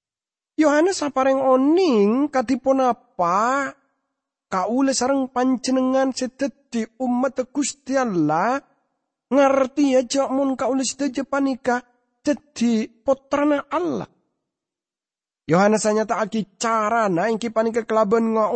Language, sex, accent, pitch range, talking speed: English, male, Indonesian, 180-250 Hz, 90 wpm